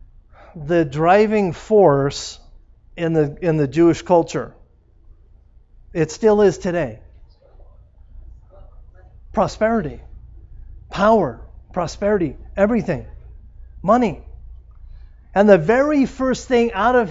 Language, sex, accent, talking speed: English, male, American, 90 wpm